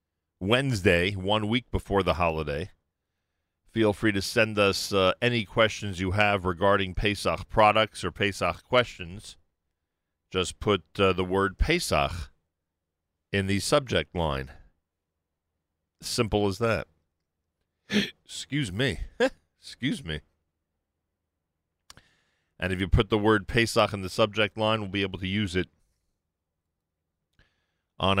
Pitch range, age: 80-110 Hz, 40-59